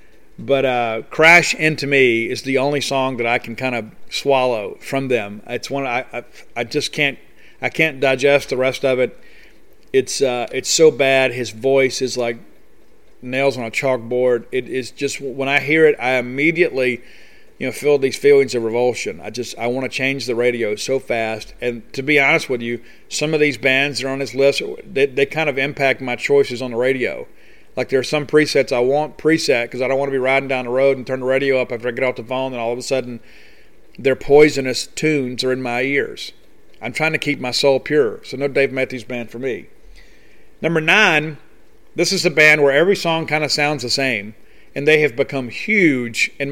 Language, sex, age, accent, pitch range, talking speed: English, male, 40-59, American, 125-150 Hz, 220 wpm